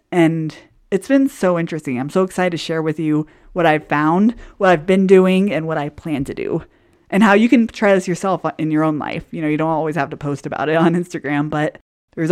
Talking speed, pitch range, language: 245 wpm, 155-200 Hz, English